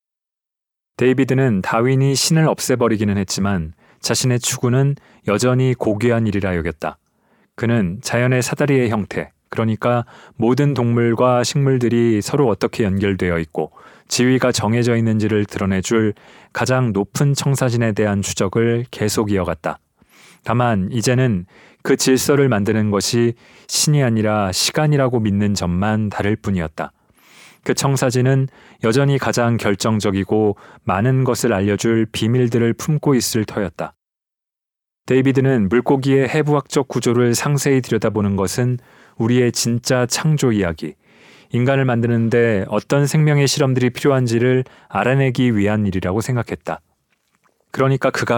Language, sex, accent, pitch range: Korean, male, native, 105-130 Hz